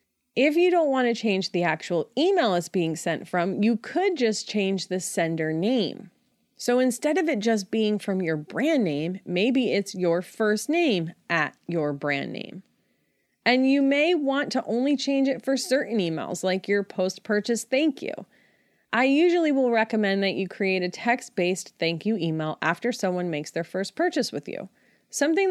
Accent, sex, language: American, female, English